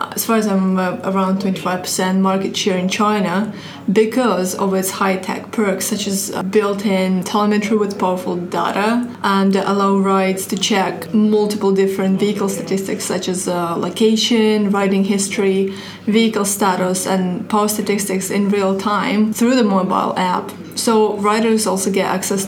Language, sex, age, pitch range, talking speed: English, female, 20-39, 195-215 Hz, 150 wpm